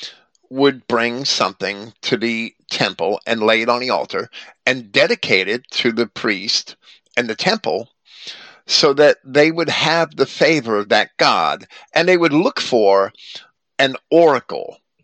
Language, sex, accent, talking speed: English, male, American, 150 wpm